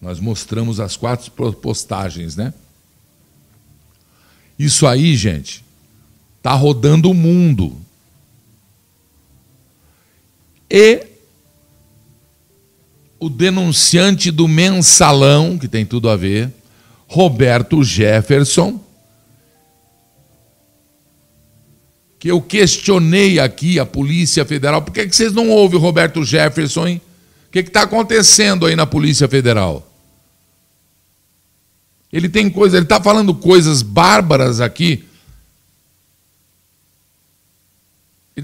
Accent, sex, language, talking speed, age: Brazilian, male, Portuguese, 100 wpm, 50-69